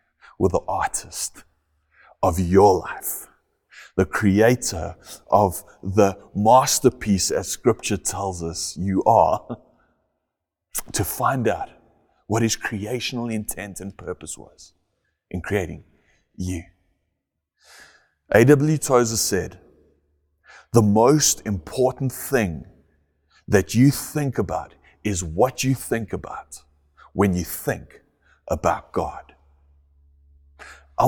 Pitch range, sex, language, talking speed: 80-120 Hz, male, English, 100 wpm